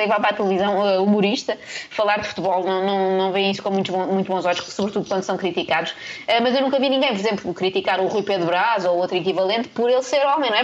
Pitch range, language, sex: 185-225 Hz, Portuguese, female